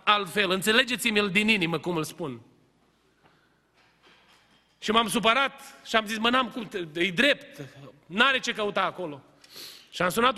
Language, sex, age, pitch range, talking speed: Romanian, male, 30-49, 190-260 Hz, 150 wpm